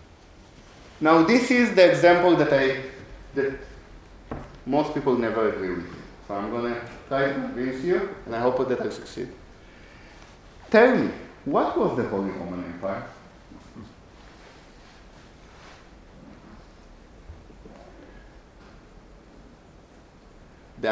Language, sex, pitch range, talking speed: English, male, 105-145 Hz, 100 wpm